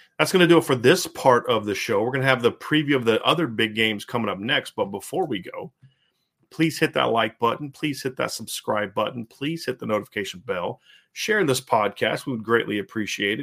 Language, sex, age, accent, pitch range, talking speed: English, male, 40-59, American, 110-135 Hz, 230 wpm